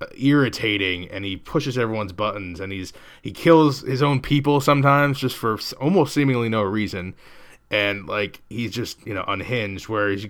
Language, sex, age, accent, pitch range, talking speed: English, male, 20-39, American, 95-115 Hz, 170 wpm